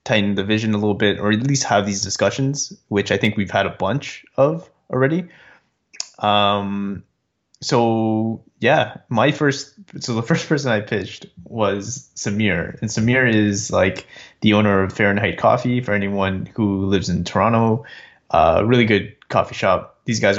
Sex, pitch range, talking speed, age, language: male, 100-120 Hz, 165 wpm, 20-39, English